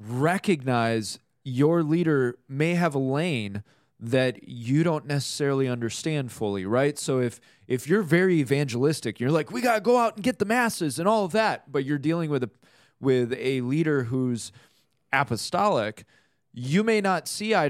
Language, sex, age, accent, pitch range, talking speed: English, male, 20-39, American, 125-170 Hz, 170 wpm